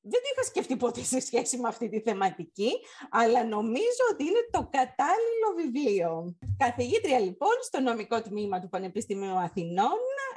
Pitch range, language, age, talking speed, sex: 185-255 Hz, Greek, 30-49, 150 wpm, female